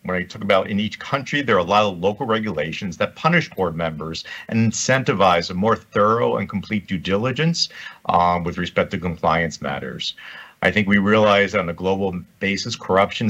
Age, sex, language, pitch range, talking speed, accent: 50-69, male, Spanish, 95-115 Hz, 195 wpm, American